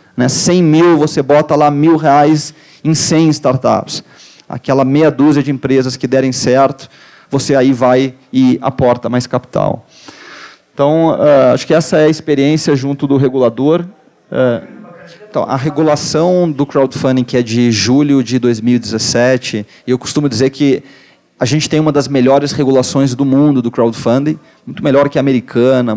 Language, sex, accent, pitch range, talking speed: Portuguese, male, Brazilian, 130-155 Hz, 150 wpm